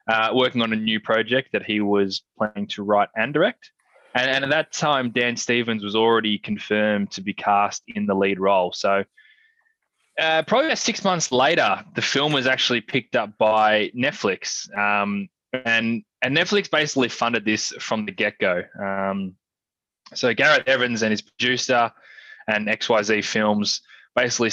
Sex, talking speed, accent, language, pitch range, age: male, 165 wpm, Australian, English, 105-130 Hz, 20-39